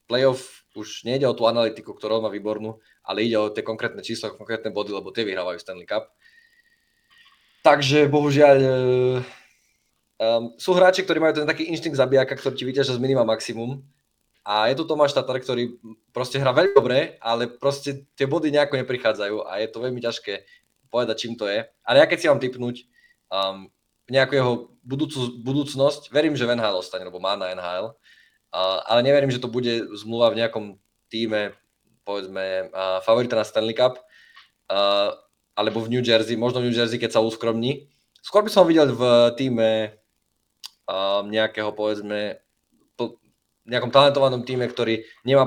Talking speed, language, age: 160 wpm, Slovak, 20-39